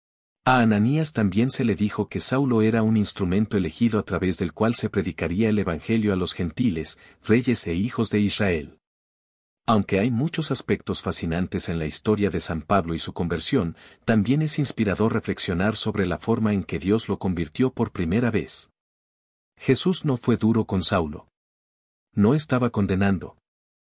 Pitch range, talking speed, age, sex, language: 90-115 Hz, 165 wpm, 50-69, male, Spanish